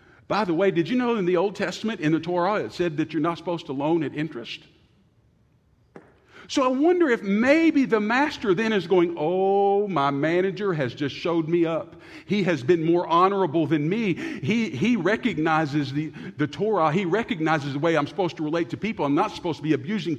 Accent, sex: American, male